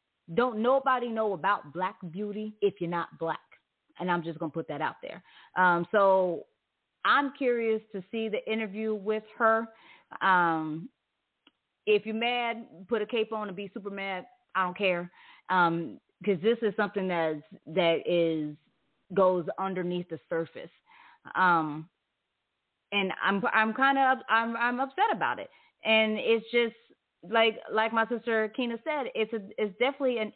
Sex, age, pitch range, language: female, 30-49, 190-235 Hz, English